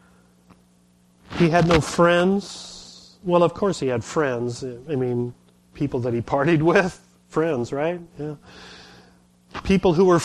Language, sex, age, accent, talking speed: English, male, 40-59, American, 135 wpm